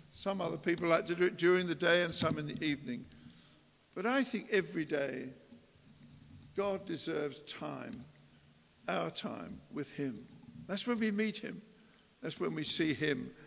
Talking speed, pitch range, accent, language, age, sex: 165 wpm, 150-210 Hz, British, English, 60-79, male